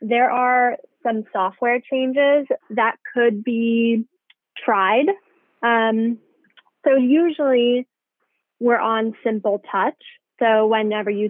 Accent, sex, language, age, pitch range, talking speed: American, female, English, 20-39, 220-265 Hz, 100 wpm